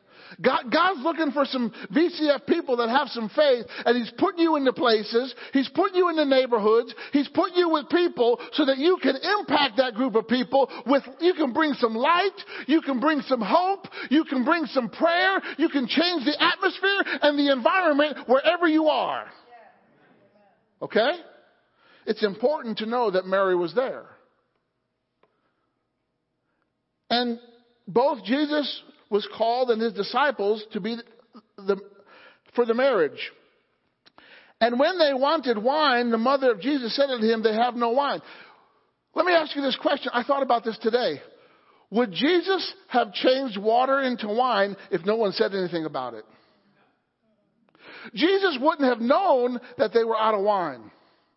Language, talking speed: English, 160 wpm